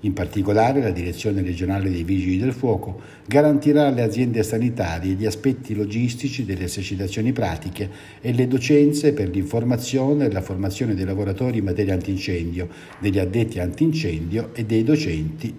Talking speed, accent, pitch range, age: 145 wpm, native, 95-125 Hz, 60-79